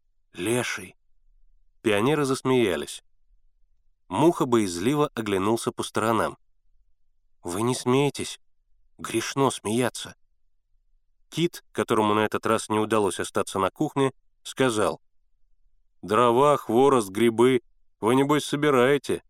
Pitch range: 100-135 Hz